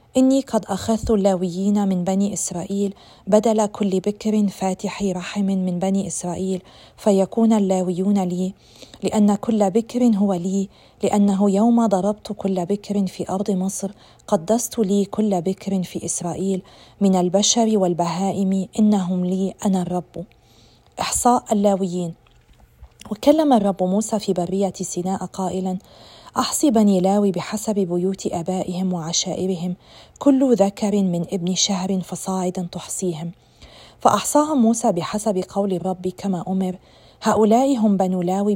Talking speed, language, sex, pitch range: 120 wpm, Arabic, female, 185-205 Hz